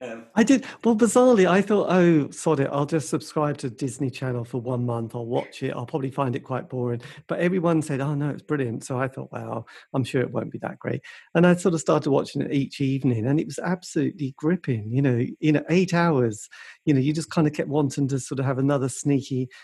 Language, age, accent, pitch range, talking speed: English, 50-69, British, 125-150 Hz, 240 wpm